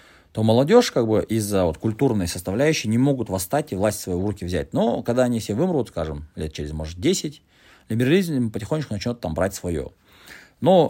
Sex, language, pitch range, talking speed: male, Russian, 85-115 Hz, 185 wpm